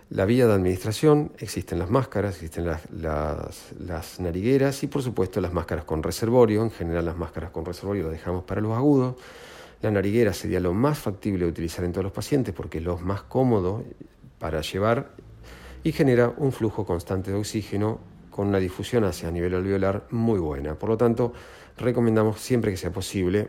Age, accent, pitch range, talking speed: 40-59, Argentinian, 85-110 Hz, 185 wpm